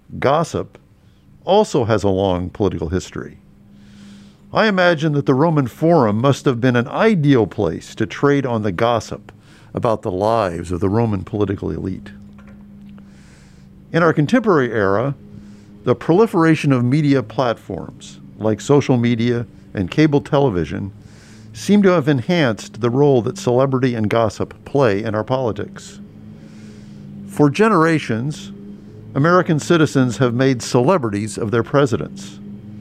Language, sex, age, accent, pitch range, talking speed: English, male, 50-69, American, 100-140 Hz, 130 wpm